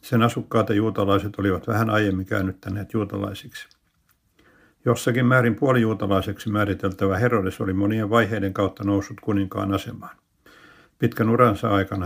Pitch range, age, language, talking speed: 100-115 Hz, 60-79, Finnish, 120 wpm